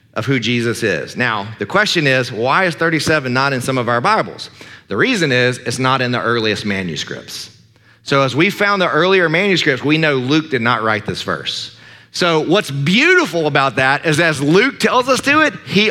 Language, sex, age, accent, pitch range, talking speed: English, male, 40-59, American, 130-170 Hz, 205 wpm